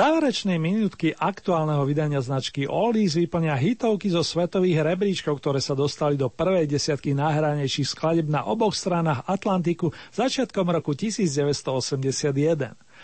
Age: 40-59